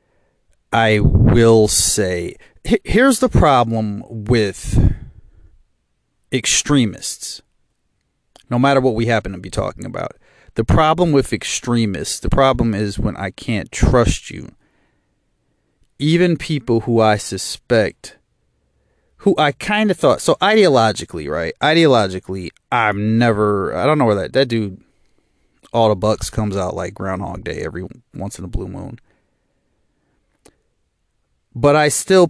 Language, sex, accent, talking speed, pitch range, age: English, male, American, 130 wpm, 100-135 Hz, 30-49